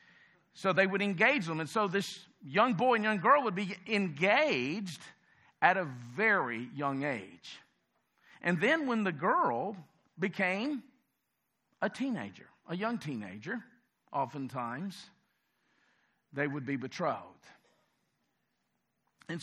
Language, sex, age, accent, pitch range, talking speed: English, male, 50-69, American, 160-215 Hz, 115 wpm